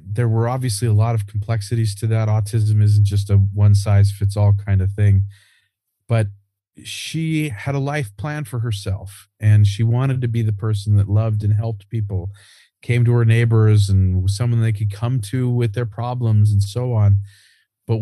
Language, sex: English, male